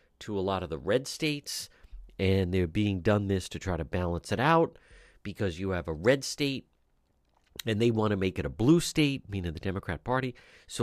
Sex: male